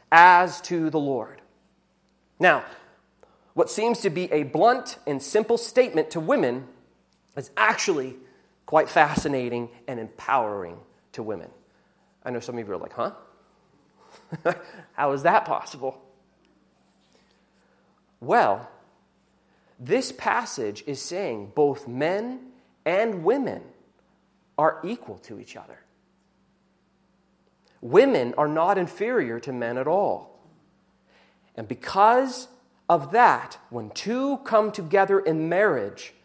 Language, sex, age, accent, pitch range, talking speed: English, male, 30-49, American, 130-200 Hz, 115 wpm